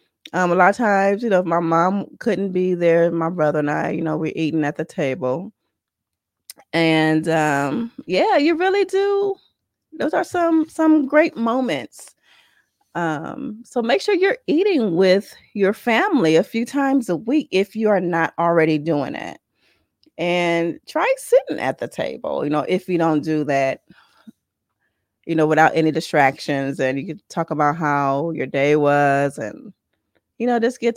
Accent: American